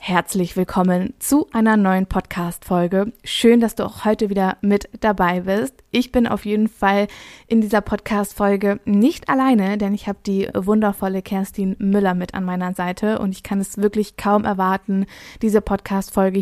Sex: female